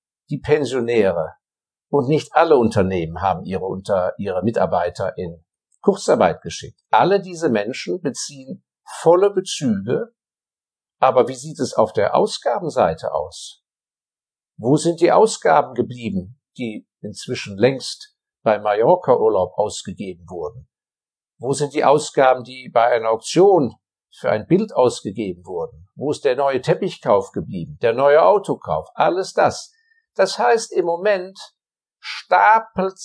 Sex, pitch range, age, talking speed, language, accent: male, 130-220 Hz, 50-69, 125 wpm, German, German